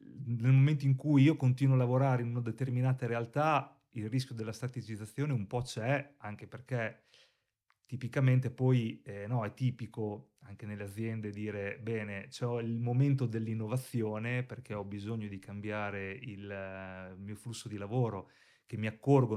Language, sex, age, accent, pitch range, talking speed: Italian, male, 30-49, native, 115-135 Hz, 155 wpm